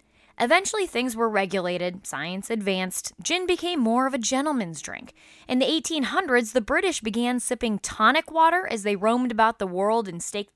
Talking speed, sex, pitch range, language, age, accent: 170 wpm, female, 195-265 Hz, English, 20-39, American